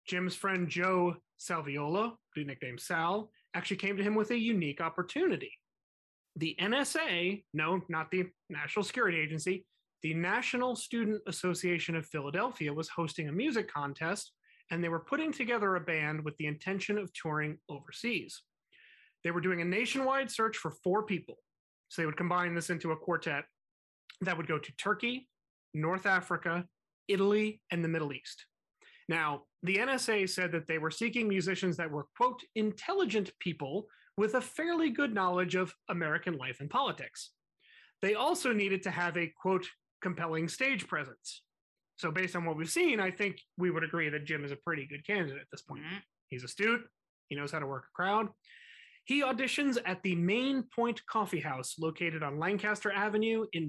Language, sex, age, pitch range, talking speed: English, male, 30-49, 160-215 Hz, 170 wpm